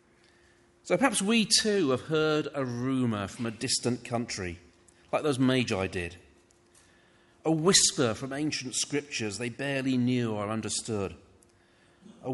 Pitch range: 100-165 Hz